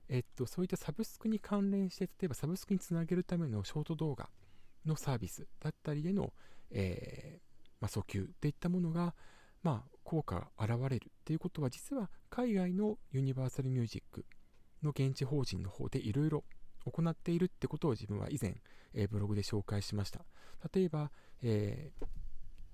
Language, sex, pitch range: Japanese, male, 105-180 Hz